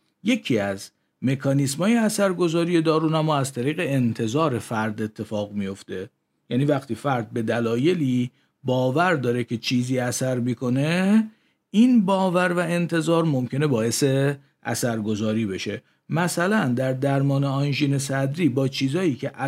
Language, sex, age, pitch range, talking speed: Persian, male, 50-69, 125-165 Hz, 115 wpm